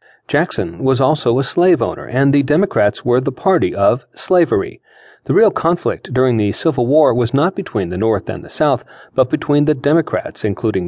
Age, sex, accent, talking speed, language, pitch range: 40-59, male, American, 190 wpm, English, 120-145 Hz